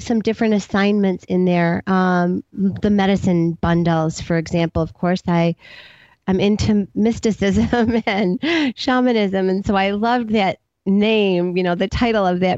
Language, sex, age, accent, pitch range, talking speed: English, female, 30-49, American, 180-220 Hz, 150 wpm